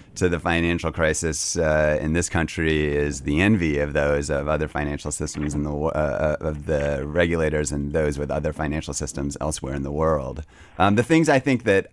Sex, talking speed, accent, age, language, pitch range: male, 195 wpm, American, 30-49, English, 75-90 Hz